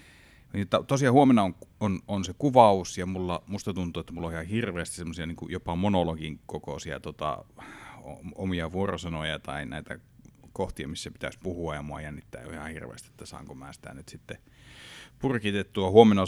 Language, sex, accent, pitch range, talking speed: Finnish, male, native, 80-100 Hz, 155 wpm